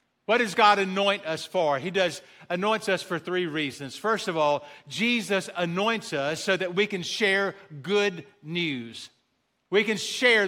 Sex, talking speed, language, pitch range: male, 165 wpm, English, 155-220 Hz